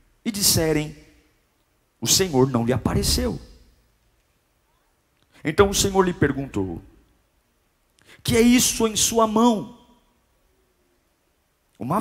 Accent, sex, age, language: Brazilian, male, 50-69, Portuguese